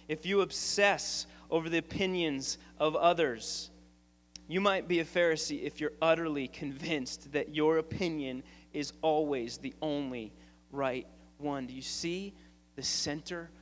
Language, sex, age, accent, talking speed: English, male, 30-49, American, 135 wpm